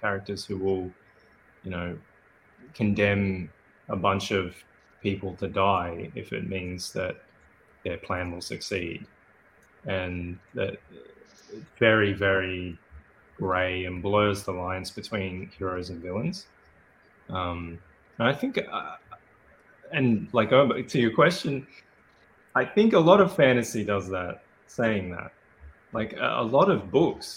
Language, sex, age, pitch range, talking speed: English, male, 20-39, 90-105 Hz, 130 wpm